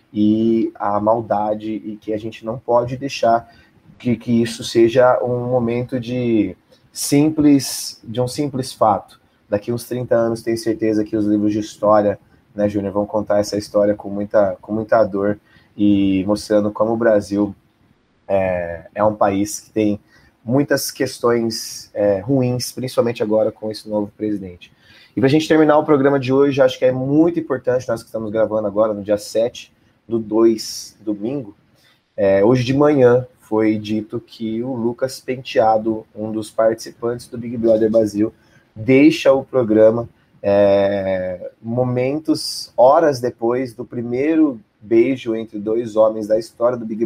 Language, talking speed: Portuguese, 155 wpm